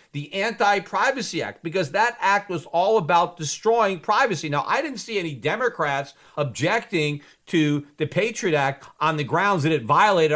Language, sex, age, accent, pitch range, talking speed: English, male, 50-69, American, 150-195 Hz, 160 wpm